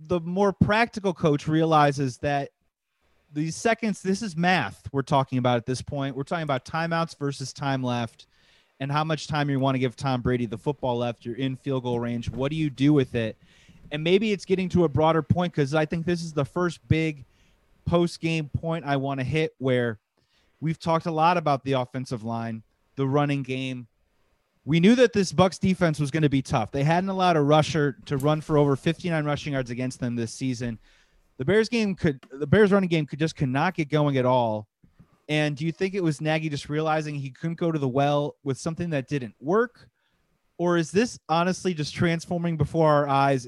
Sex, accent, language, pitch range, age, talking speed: male, American, English, 130-165 Hz, 30-49, 215 wpm